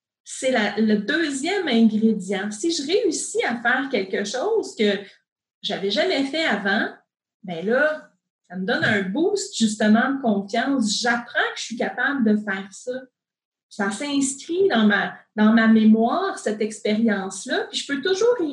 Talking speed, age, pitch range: 160 wpm, 30-49, 215-275 Hz